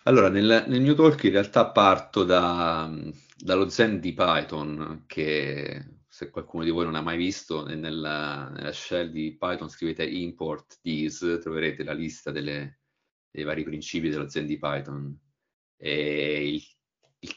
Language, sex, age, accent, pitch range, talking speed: Italian, male, 30-49, native, 75-85 Hz, 150 wpm